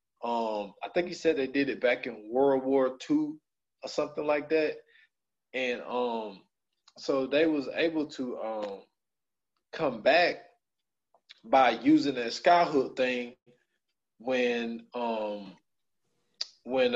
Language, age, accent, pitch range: English, 20-39, American, 120-185 Hz